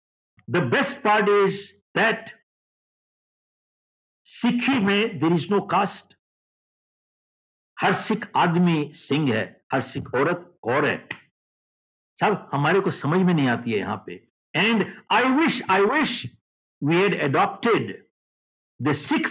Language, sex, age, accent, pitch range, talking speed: Hindi, male, 60-79, native, 150-215 Hz, 120 wpm